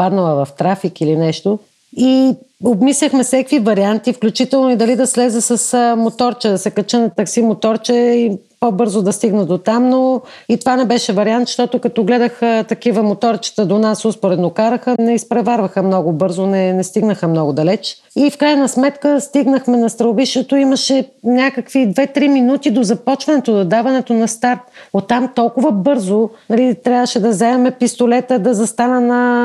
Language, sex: Bulgarian, female